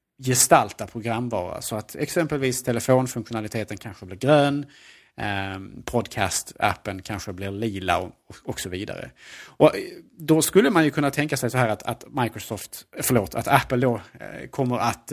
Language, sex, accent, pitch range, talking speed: Swedish, male, Norwegian, 110-140 Hz, 150 wpm